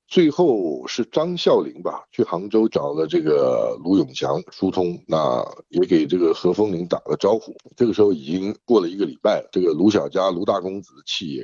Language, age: Chinese, 60-79